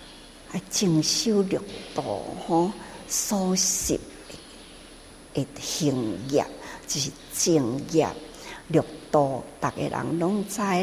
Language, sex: Chinese, female